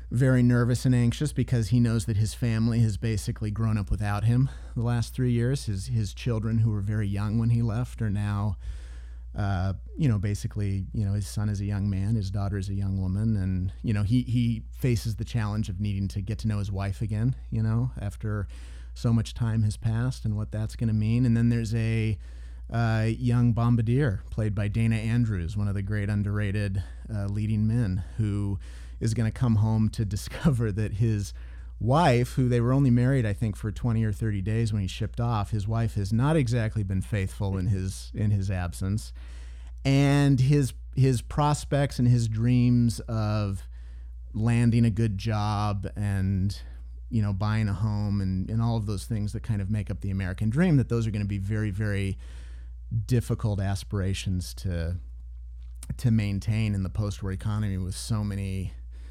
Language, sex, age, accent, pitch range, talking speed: English, male, 30-49, American, 95-115 Hz, 190 wpm